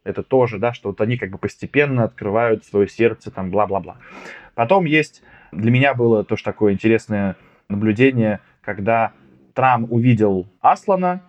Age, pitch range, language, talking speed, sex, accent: 20-39, 110-130 Hz, Russian, 145 wpm, male, native